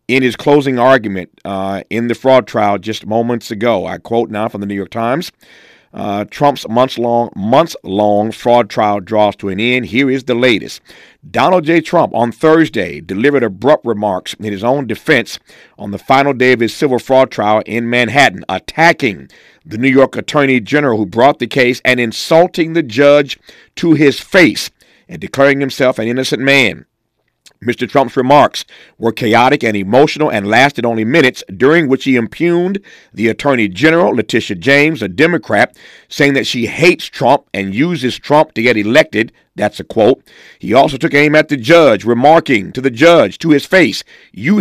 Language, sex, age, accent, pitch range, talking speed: English, male, 50-69, American, 115-150 Hz, 180 wpm